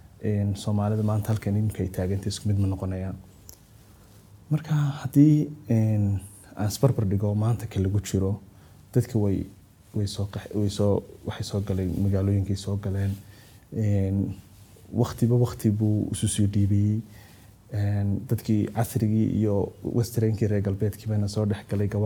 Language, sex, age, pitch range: Finnish, male, 20-39, 100-115 Hz